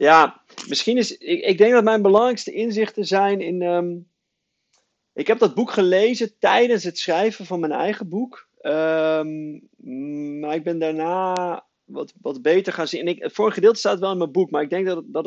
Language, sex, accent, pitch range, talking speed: Dutch, male, Dutch, 135-185 Hz, 200 wpm